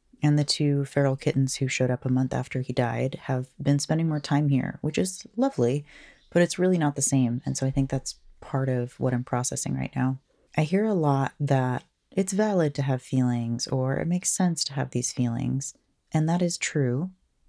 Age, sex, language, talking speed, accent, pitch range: 30-49, female, English, 215 wpm, American, 130-160 Hz